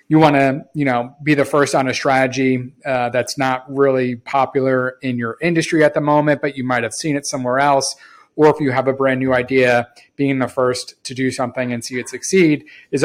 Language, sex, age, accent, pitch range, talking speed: English, male, 30-49, American, 125-140 Hz, 225 wpm